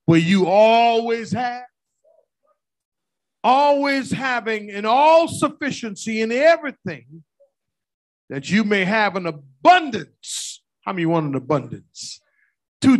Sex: male